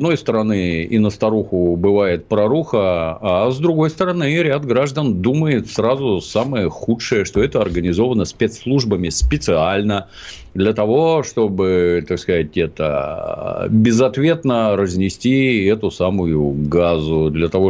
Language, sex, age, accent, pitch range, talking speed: Russian, male, 50-69, native, 90-120 Hz, 120 wpm